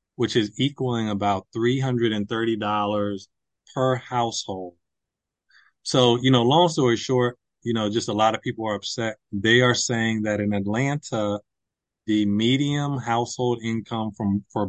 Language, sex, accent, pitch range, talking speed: English, male, American, 105-120 Hz, 140 wpm